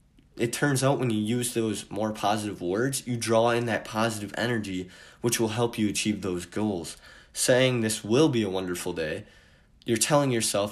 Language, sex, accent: English, male, American